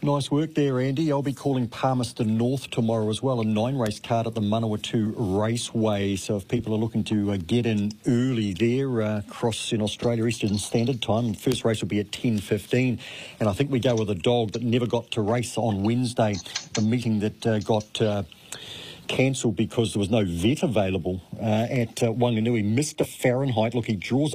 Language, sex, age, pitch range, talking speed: English, male, 50-69, 105-130 Hz, 195 wpm